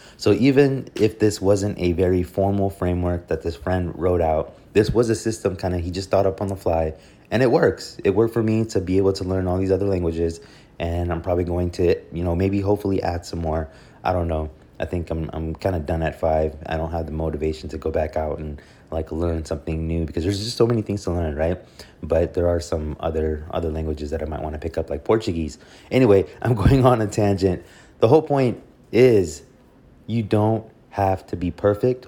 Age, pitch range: 20-39, 85-105 Hz